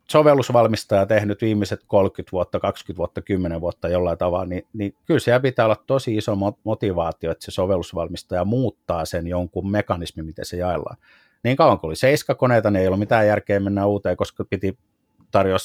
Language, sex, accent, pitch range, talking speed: Finnish, male, native, 95-130 Hz, 175 wpm